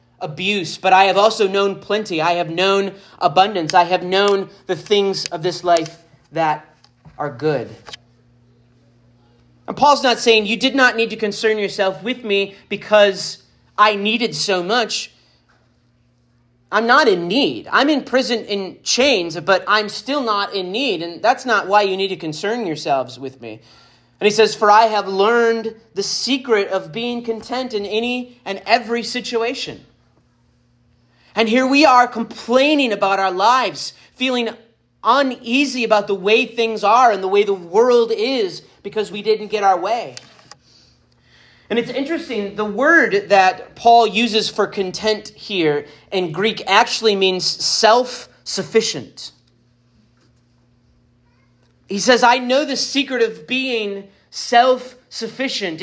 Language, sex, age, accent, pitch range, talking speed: English, male, 30-49, American, 160-230 Hz, 145 wpm